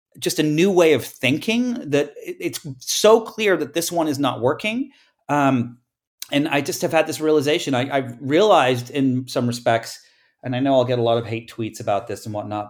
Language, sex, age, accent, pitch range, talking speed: English, male, 30-49, American, 115-155 Hz, 210 wpm